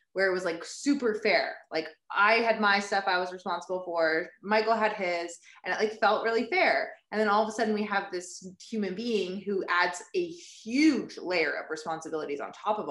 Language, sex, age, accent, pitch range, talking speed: English, female, 20-39, American, 165-215 Hz, 210 wpm